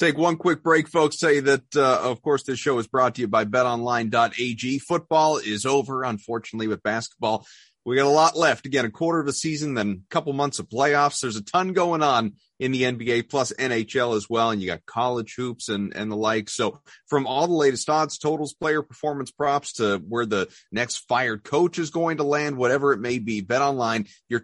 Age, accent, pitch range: 30-49, American, 105-140 Hz